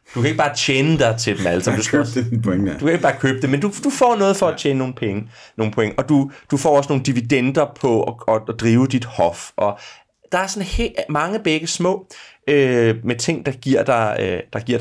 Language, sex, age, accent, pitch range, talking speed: Danish, male, 30-49, native, 120-175 Hz, 205 wpm